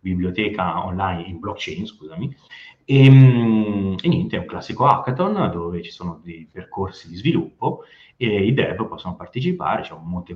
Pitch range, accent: 90-110 Hz, native